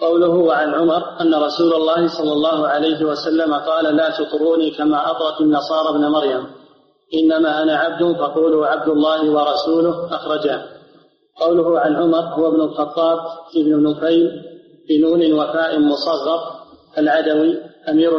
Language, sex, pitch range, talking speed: Arabic, male, 155-165 Hz, 130 wpm